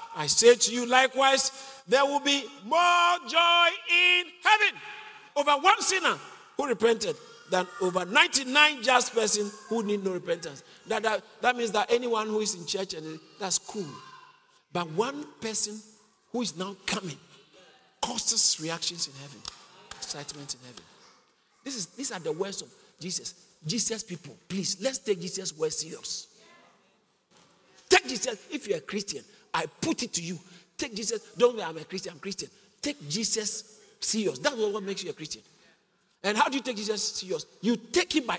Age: 50-69